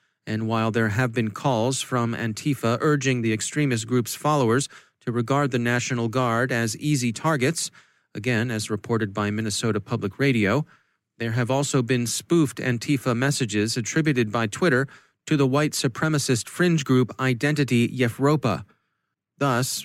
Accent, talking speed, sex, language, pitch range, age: American, 140 wpm, male, English, 115-140 Hz, 30-49